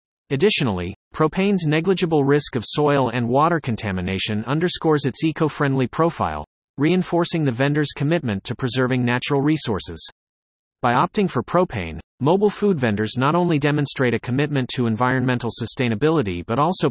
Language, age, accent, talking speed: English, 30-49, American, 135 wpm